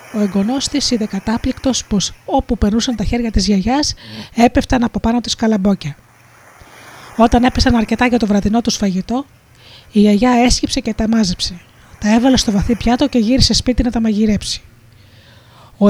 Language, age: Greek, 20-39